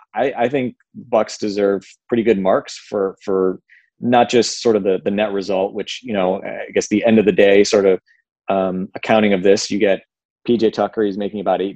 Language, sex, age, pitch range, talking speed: English, male, 20-39, 95-110 Hz, 210 wpm